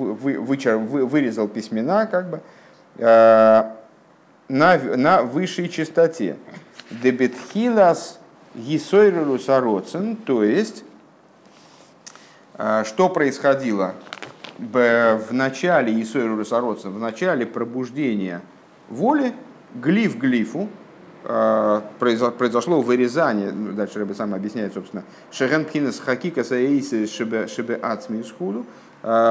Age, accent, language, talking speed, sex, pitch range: 50-69, native, Russian, 90 wpm, male, 105-165 Hz